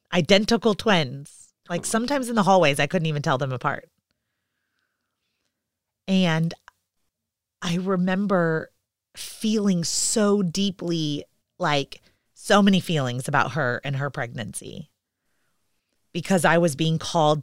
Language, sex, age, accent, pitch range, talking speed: English, female, 30-49, American, 145-195 Hz, 115 wpm